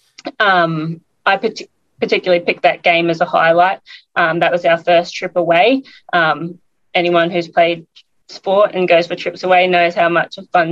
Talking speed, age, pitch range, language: 180 wpm, 20-39, 165-180 Hz, English